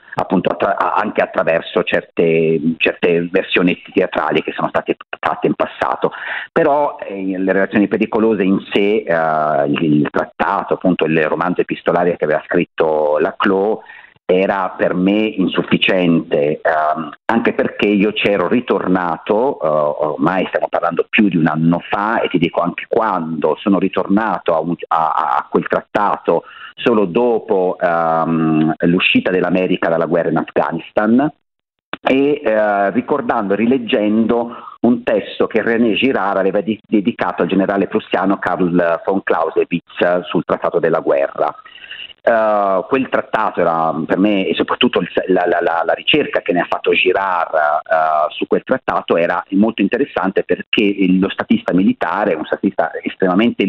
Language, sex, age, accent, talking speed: Italian, male, 40-59, native, 145 wpm